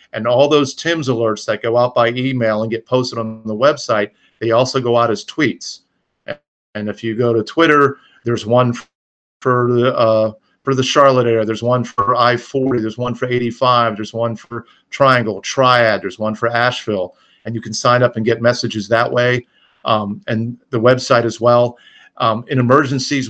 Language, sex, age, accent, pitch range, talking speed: English, male, 40-59, American, 115-125 Hz, 185 wpm